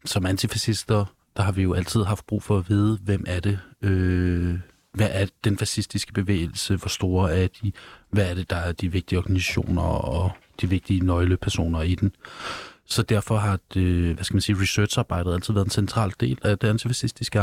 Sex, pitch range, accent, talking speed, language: male, 90-105 Hz, native, 190 wpm, Danish